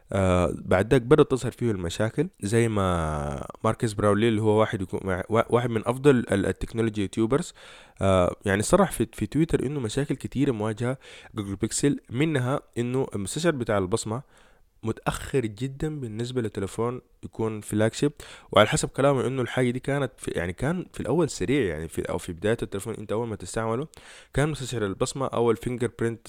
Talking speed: 155 wpm